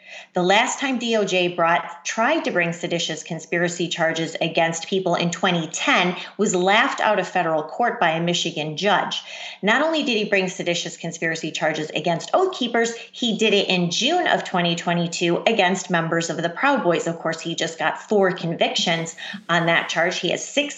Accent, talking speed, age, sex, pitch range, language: American, 175 wpm, 30-49, female, 170-230 Hz, English